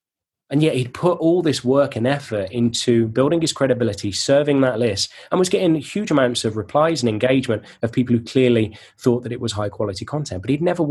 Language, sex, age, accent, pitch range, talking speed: English, male, 20-39, British, 110-145 Hz, 215 wpm